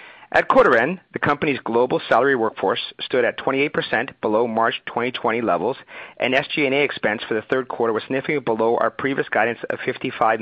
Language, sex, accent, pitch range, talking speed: English, male, American, 110-140 Hz, 175 wpm